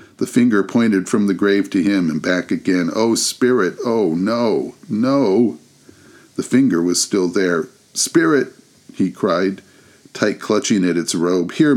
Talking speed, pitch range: 155 wpm, 95-130 Hz